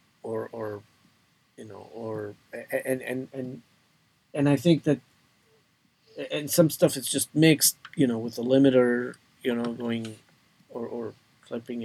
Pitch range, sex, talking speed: 110-135 Hz, male, 145 wpm